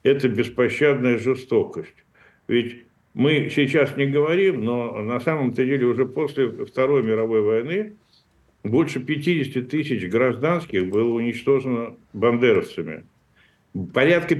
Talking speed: 105 wpm